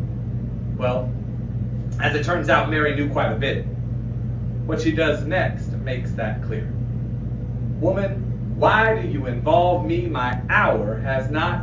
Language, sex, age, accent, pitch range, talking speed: English, male, 40-59, American, 115-130 Hz, 140 wpm